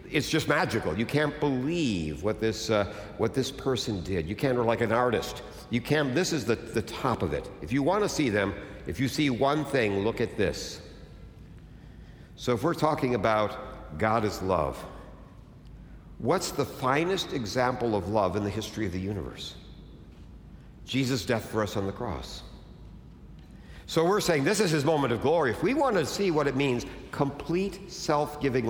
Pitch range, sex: 100-145 Hz, male